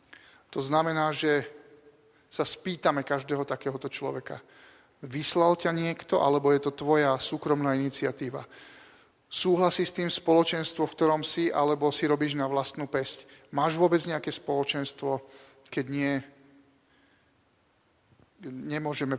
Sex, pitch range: male, 140-155 Hz